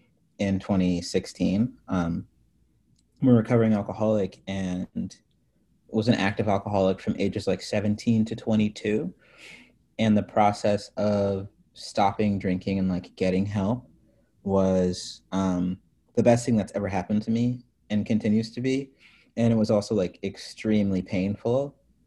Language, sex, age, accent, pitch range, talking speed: English, male, 30-49, American, 95-110 Hz, 135 wpm